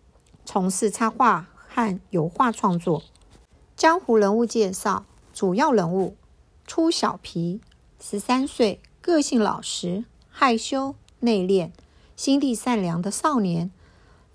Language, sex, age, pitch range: Chinese, female, 50-69, 190-245 Hz